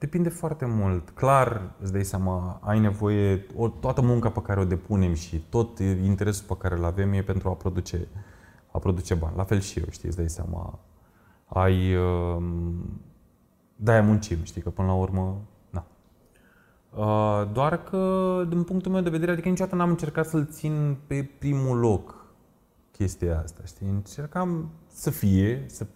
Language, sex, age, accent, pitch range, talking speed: Romanian, male, 20-39, native, 95-160 Hz, 160 wpm